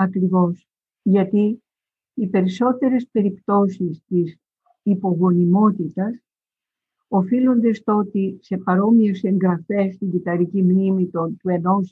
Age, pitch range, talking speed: 50-69, 185-230 Hz, 95 wpm